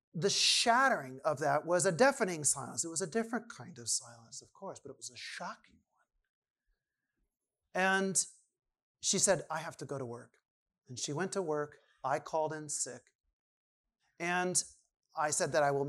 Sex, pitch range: male, 125-155 Hz